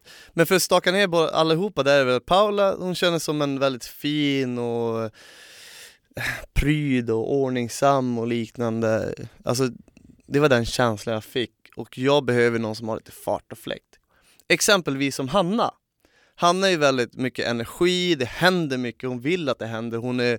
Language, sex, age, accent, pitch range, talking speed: Swedish, male, 20-39, native, 120-155 Hz, 170 wpm